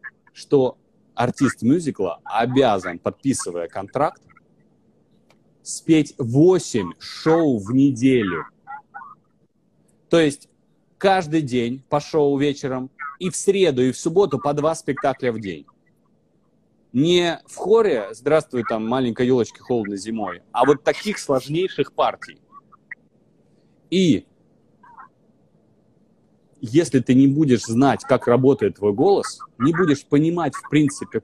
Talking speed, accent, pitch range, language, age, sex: 110 wpm, native, 120-155 Hz, Russian, 30-49, male